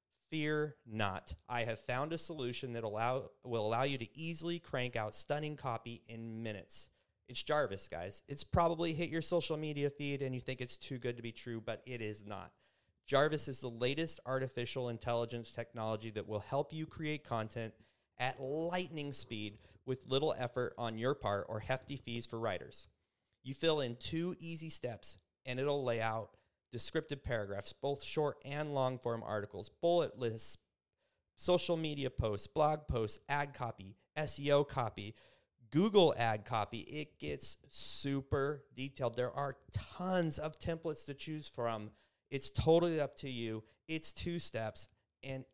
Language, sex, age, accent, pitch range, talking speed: English, male, 30-49, American, 115-145 Hz, 160 wpm